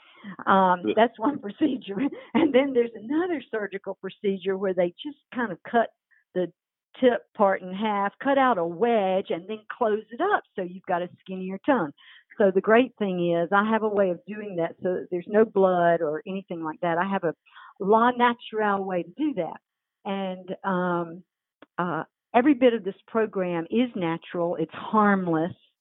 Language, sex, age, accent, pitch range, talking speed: English, female, 50-69, American, 180-235 Hz, 180 wpm